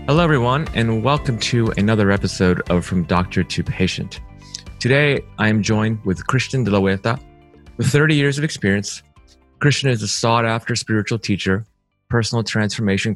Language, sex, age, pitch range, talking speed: English, male, 30-49, 90-110 Hz, 155 wpm